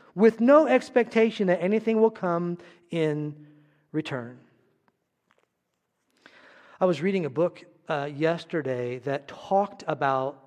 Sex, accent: male, American